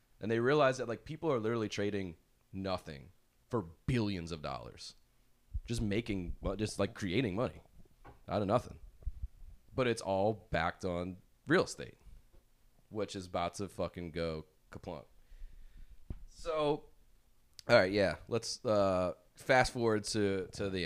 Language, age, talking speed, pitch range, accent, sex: English, 30-49, 140 wpm, 80-105 Hz, American, male